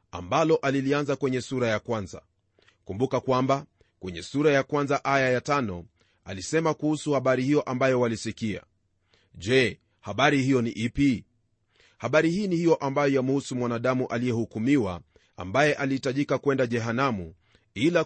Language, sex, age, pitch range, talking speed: Swahili, male, 30-49, 110-145 Hz, 130 wpm